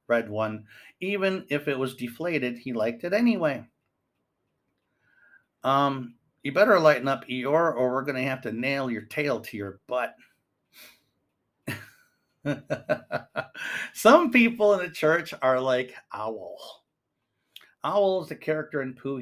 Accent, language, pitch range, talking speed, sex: American, English, 120-155 Hz, 130 wpm, male